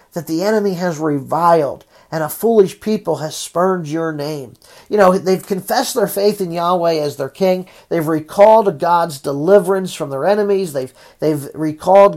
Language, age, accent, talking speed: English, 40-59, American, 170 wpm